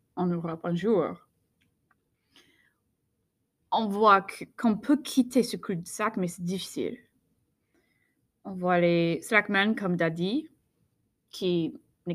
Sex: female